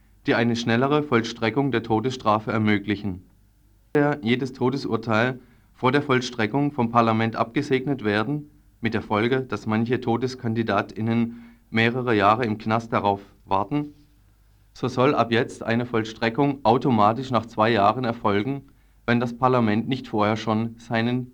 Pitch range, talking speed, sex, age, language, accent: 105-130 Hz, 130 wpm, male, 30-49, German, German